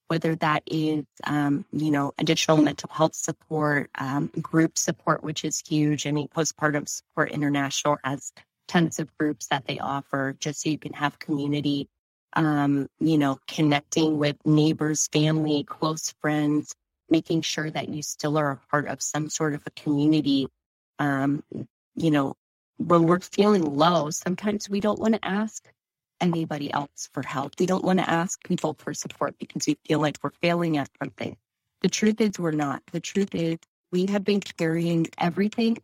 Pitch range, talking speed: 145-175 Hz, 170 wpm